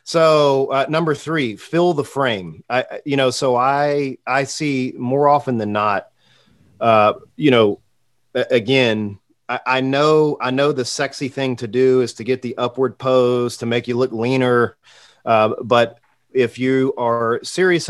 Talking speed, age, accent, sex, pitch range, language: 165 wpm, 40-59, American, male, 115-135 Hz, English